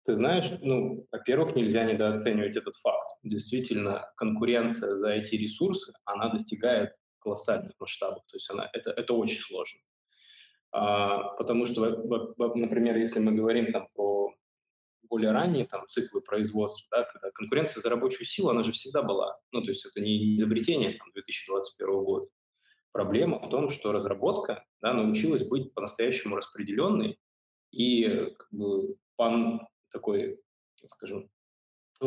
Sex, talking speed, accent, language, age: male, 135 wpm, native, Russian, 20-39